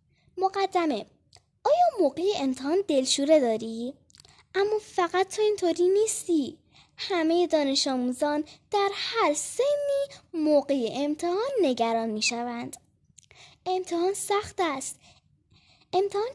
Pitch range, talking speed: 280-375 Hz, 90 wpm